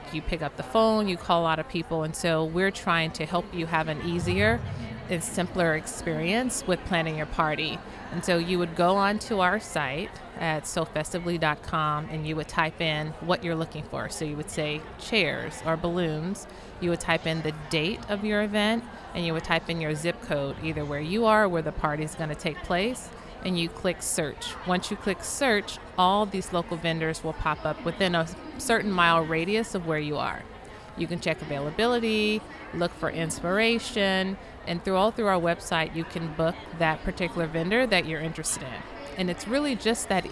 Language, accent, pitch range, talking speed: English, American, 160-195 Hz, 200 wpm